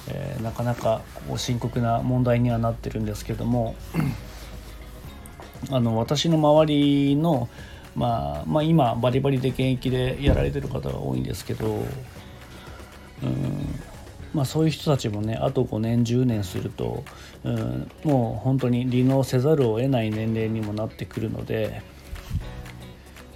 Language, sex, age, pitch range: Japanese, male, 40-59, 110-125 Hz